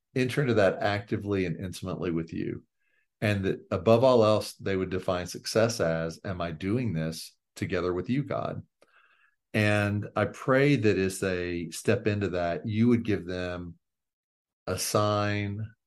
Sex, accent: male, American